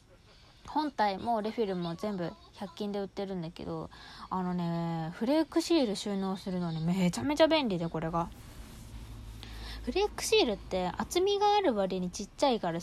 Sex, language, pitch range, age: female, Japanese, 180-260 Hz, 20-39